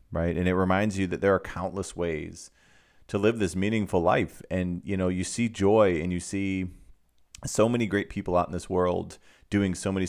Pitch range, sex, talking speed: 85-100 Hz, male, 210 wpm